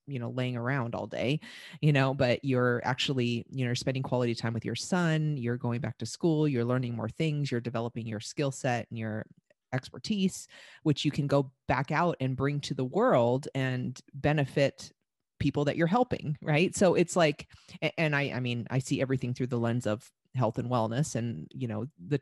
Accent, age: American, 30-49